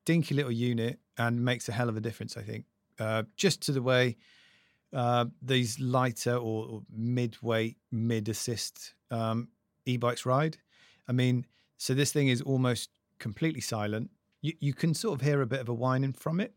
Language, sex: English, male